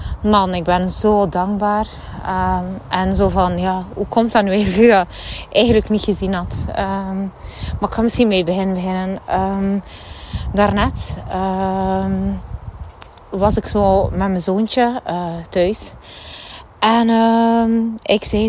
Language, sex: Dutch, female